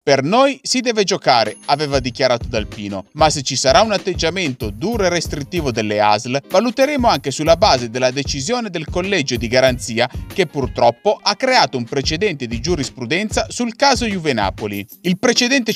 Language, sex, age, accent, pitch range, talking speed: Italian, male, 30-49, native, 125-210 Hz, 165 wpm